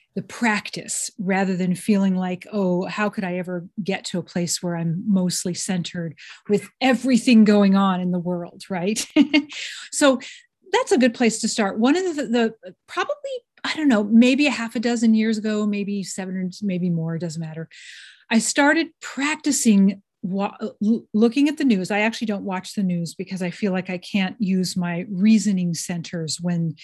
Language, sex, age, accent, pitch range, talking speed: English, female, 40-59, American, 180-225 Hz, 175 wpm